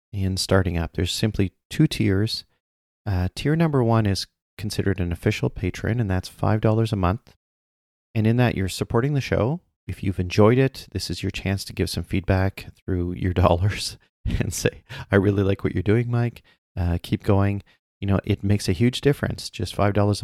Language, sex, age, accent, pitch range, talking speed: English, male, 30-49, American, 90-110 Hz, 190 wpm